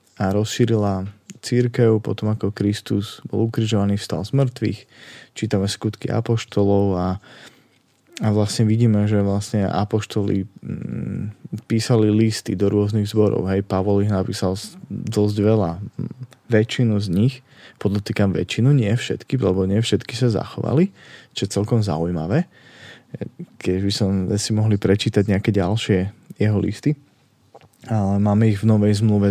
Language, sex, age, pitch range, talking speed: Slovak, male, 20-39, 100-115 Hz, 135 wpm